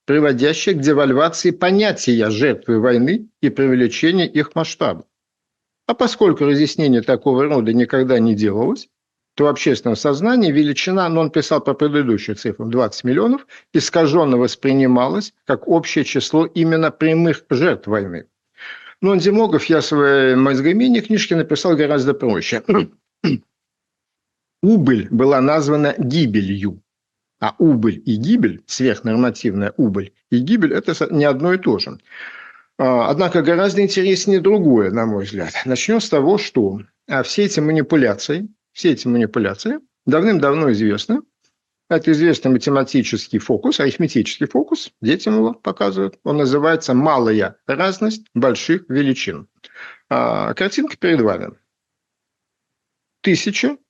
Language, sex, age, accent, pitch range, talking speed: Russian, male, 50-69, native, 125-175 Hz, 115 wpm